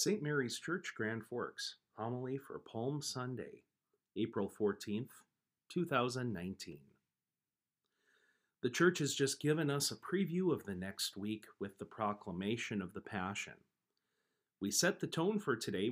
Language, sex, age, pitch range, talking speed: English, male, 40-59, 105-150 Hz, 135 wpm